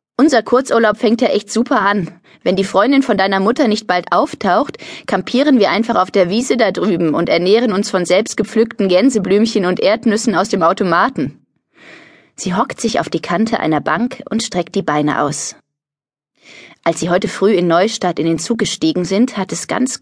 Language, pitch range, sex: German, 170-230 Hz, female